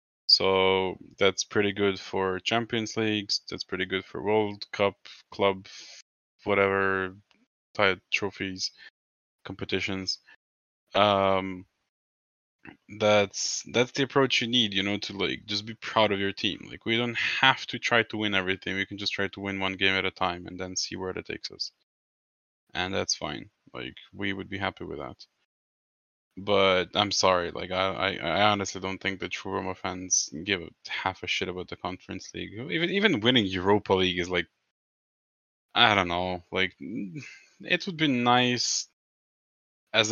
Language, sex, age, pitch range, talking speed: English, male, 20-39, 95-115 Hz, 165 wpm